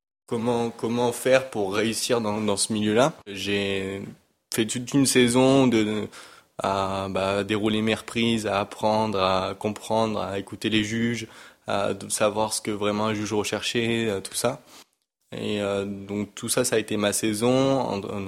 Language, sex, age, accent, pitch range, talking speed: French, male, 20-39, French, 100-110 Hz, 165 wpm